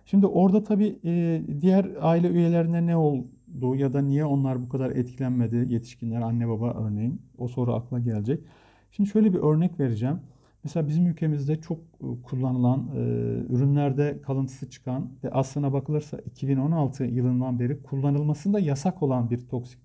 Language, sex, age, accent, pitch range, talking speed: Turkish, male, 50-69, native, 120-150 Hz, 140 wpm